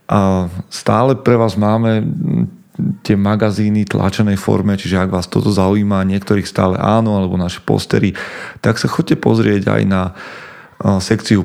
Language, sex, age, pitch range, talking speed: Slovak, male, 30-49, 95-110 Hz, 145 wpm